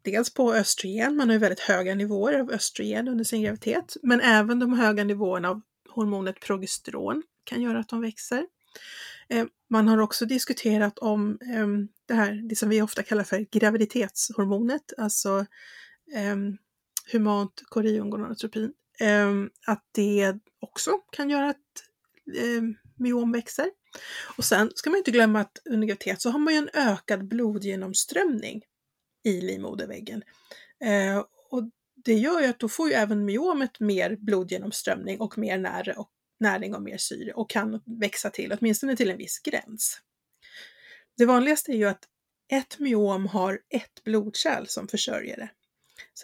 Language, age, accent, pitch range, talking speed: English, 30-49, Swedish, 205-245 Hz, 145 wpm